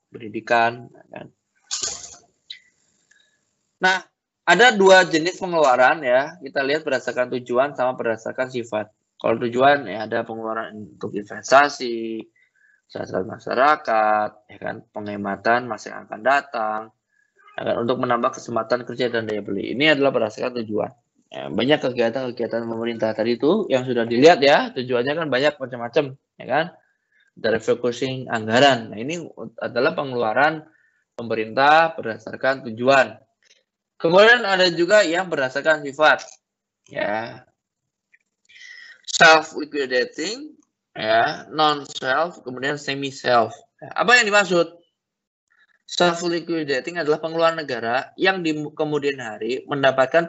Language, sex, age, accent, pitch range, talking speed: Indonesian, male, 20-39, native, 120-170 Hz, 115 wpm